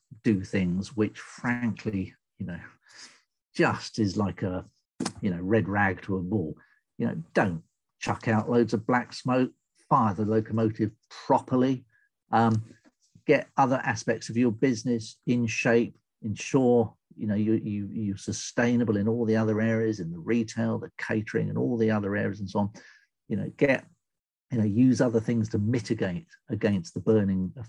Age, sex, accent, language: 50-69, male, British, English